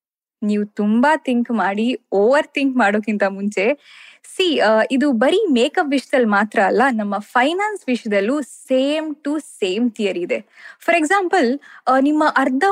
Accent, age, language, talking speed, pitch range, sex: native, 20-39, Kannada, 125 wpm, 220-300 Hz, female